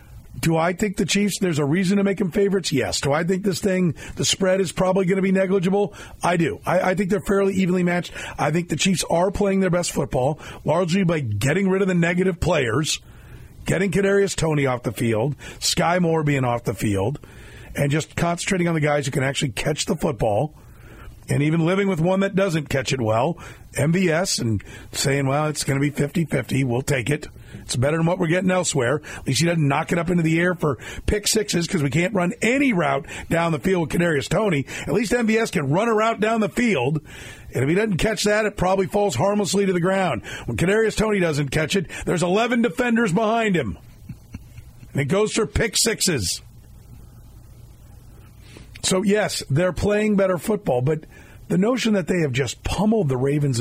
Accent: American